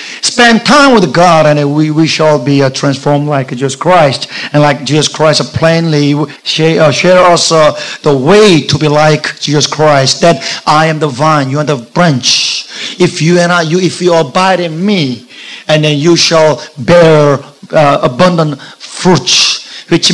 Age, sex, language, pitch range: 50-69, male, Korean, 150-185 Hz